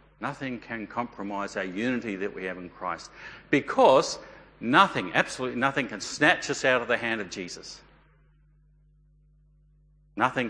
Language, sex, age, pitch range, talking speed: English, male, 50-69, 115-150 Hz, 135 wpm